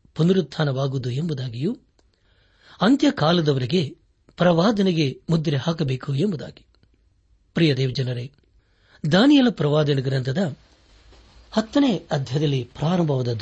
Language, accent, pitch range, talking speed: Kannada, native, 125-175 Hz, 60 wpm